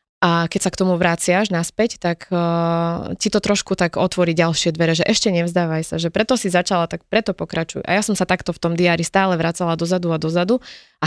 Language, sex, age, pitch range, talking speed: Slovak, female, 20-39, 165-190 Hz, 230 wpm